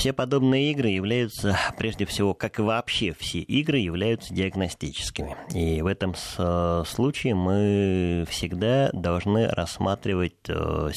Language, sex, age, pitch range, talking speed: Russian, male, 20-39, 85-115 Hz, 115 wpm